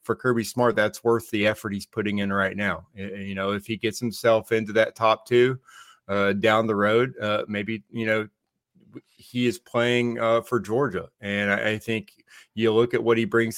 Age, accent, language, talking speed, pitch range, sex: 30-49, American, English, 200 wpm, 105-115 Hz, male